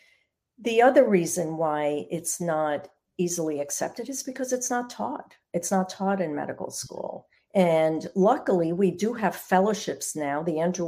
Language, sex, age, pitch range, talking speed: English, female, 50-69, 160-210 Hz, 155 wpm